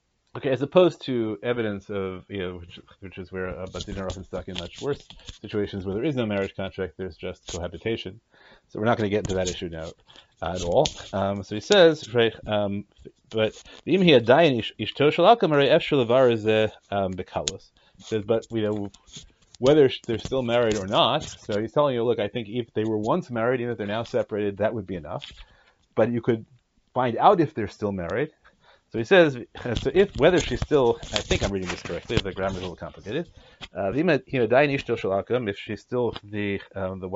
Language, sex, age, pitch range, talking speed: English, male, 30-49, 95-120 Hz, 190 wpm